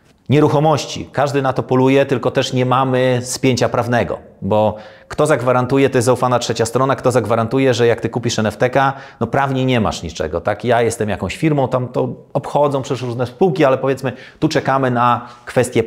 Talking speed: 180 wpm